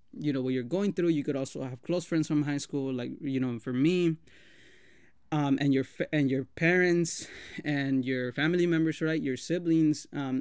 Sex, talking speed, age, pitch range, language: male, 200 wpm, 20-39, 135-160 Hz, English